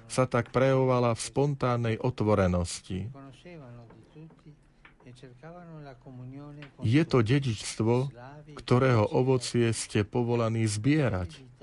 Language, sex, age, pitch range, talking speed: Slovak, male, 40-59, 110-135 Hz, 70 wpm